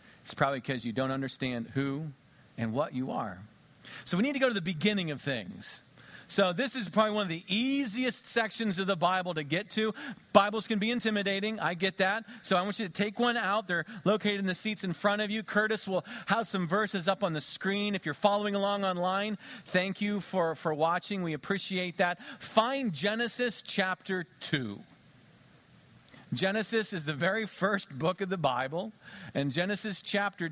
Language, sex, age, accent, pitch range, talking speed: English, male, 40-59, American, 165-215 Hz, 195 wpm